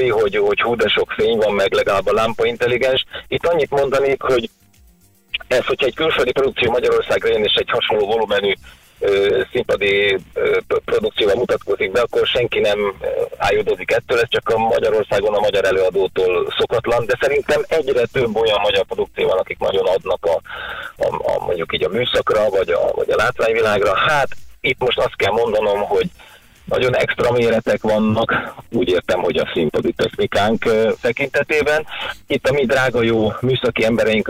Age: 30-49